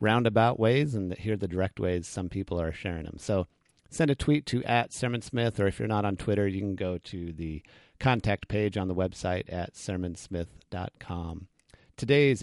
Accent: American